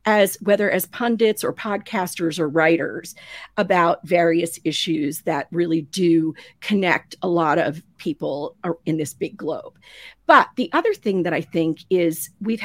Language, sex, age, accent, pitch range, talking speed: English, female, 50-69, American, 165-205 Hz, 150 wpm